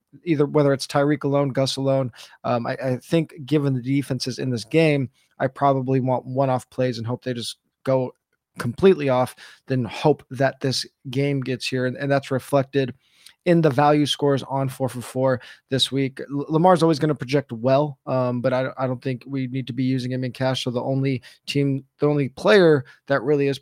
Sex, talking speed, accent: male, 210 wpm, American